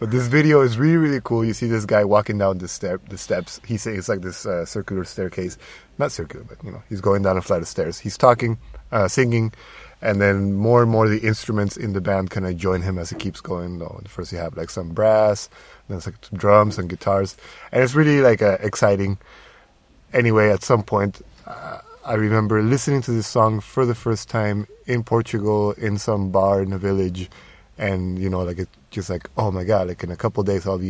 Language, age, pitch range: English, 30-49, 95-115 Hz